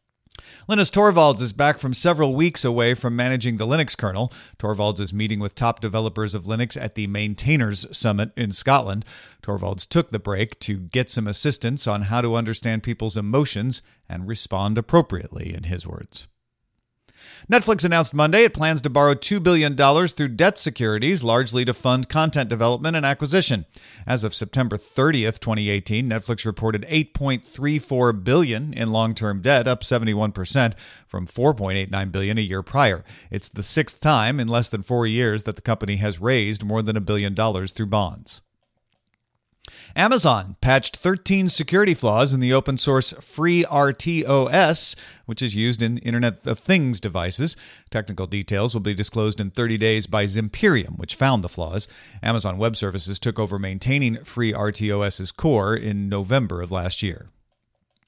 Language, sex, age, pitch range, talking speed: English, male, 40-59, 105-140 Hz, 155 wpm